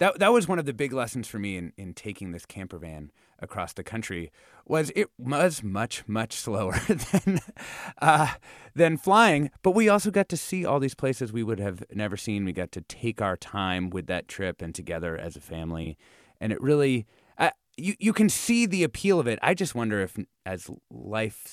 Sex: male